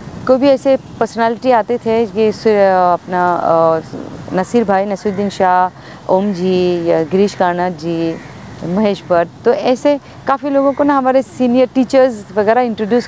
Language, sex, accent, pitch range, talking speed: Hindi, female, native, 195-240 Hz, 140 wpm